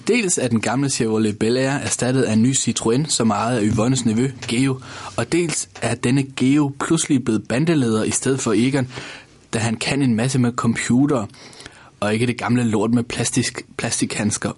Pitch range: 115-140 Hz